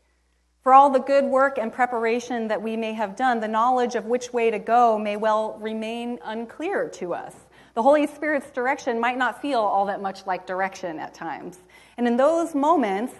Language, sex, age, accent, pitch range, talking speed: English, female, 30-49, American, 195-265 Hz, 195 wpm